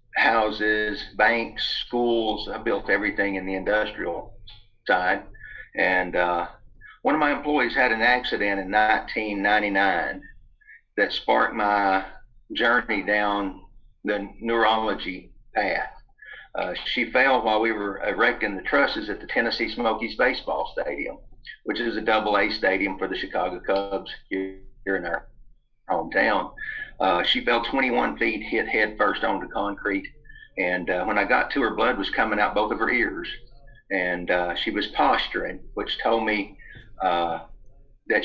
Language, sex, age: English, male, 50-69